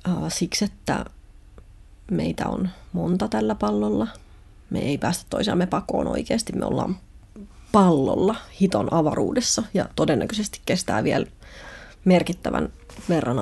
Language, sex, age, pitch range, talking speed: Finnish, female, 30-49, 150-195 Hz, 105 wpm